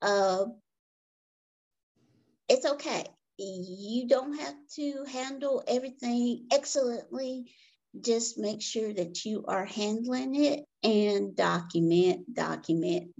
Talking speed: 95 wpm